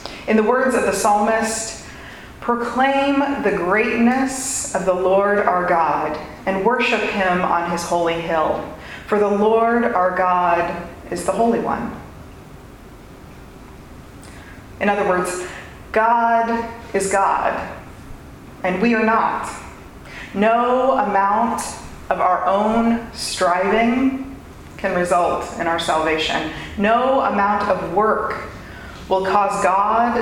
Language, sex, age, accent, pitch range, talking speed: English, female, 30-49, American, 175-230 Hz, 115 wpm